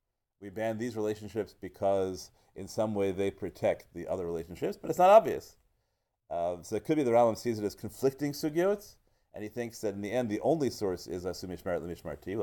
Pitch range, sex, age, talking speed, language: 100-135 Hz, male, 30-49, 210 wpm, English